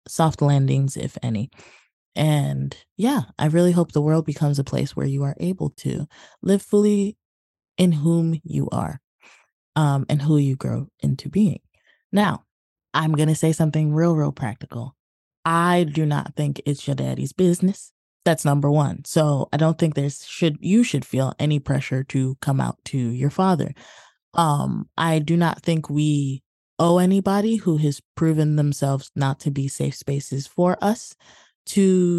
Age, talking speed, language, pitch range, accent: 20-39, 165 wpm, English, 140-175 Hz, American